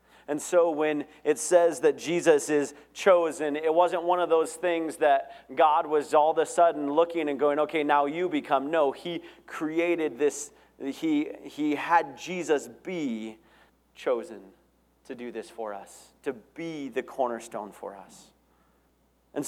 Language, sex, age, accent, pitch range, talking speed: English, male, 30-49, American, 120-165 Hz, 155 wpm